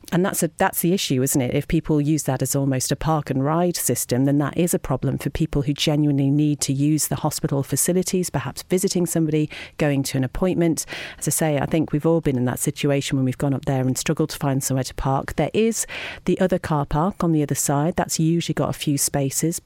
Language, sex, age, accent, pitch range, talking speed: English, female, 40-59, British, 140-165 Hz, 245 wpm